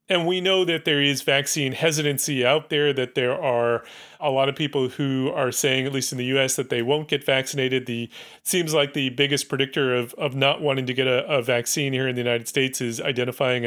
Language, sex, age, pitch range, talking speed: English, male, 30-49, 130-165 Hz, 230 wpm